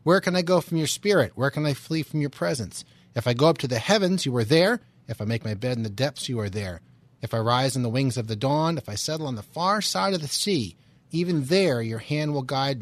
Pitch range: 115-145 Hz